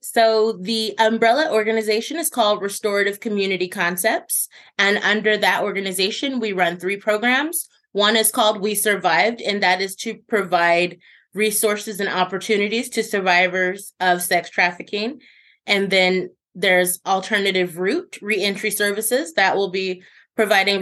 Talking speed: 135 wpm